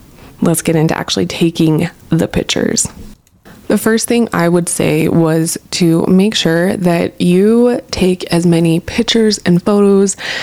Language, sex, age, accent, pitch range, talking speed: English, female, 20-39, American, 165-200 Hz, 145 wpm